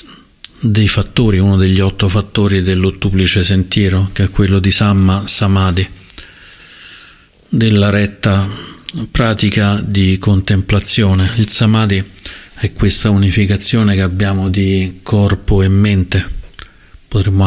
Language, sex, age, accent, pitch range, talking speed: Italian, male, 50-69, native, 95-105 Hz, 105 wpm